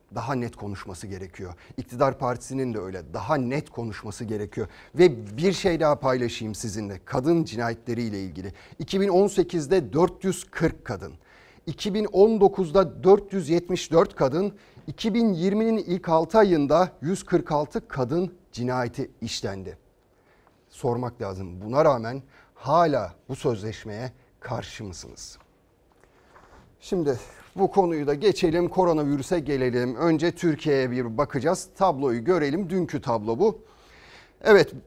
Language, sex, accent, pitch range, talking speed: Turkish, male, native, 125-185 Hz, 105 wpm